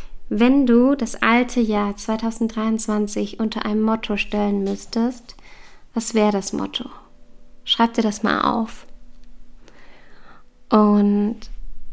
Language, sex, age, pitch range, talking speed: German, female, 20-39, 210-235 Hz, 105 wpm